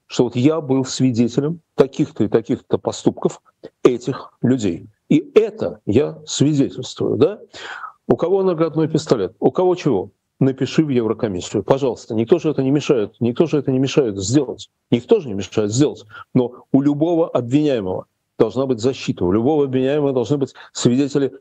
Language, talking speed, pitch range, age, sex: Russian, 155 wpm, 130-175 Hz, 40-59, male